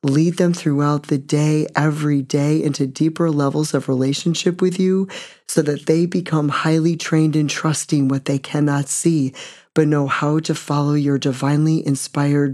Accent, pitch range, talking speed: American, 140-160 Hz, 165 wpm